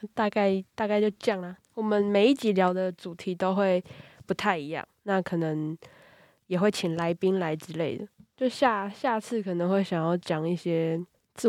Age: 20-39